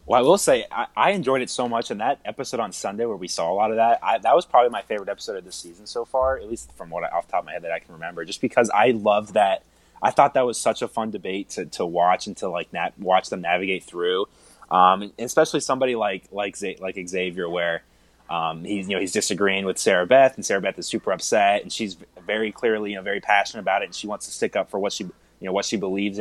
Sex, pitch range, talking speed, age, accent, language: male, 95-120 Hz, 275 wpm, 20-39, American, English